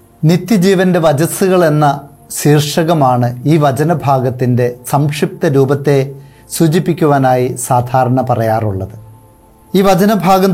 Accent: native